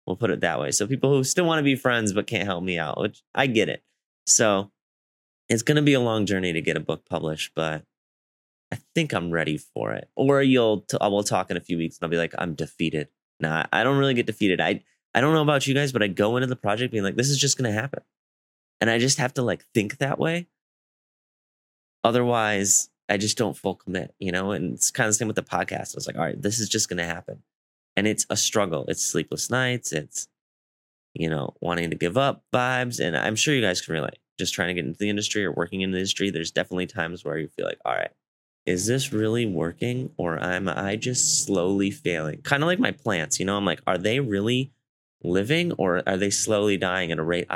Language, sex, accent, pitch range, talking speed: English, male, American, 85-125 Hz, 245 wpm